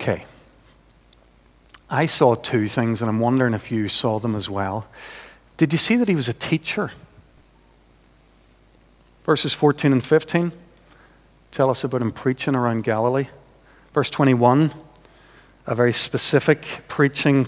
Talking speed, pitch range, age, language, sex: 135 wpm, 115-150 Hz, 50-69, English, male